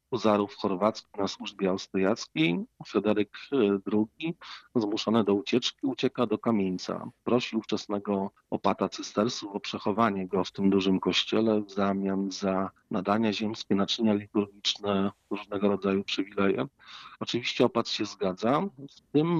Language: Polish